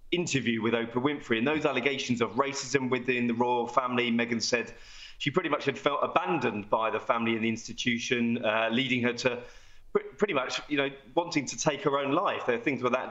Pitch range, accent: 115-155 Hz, British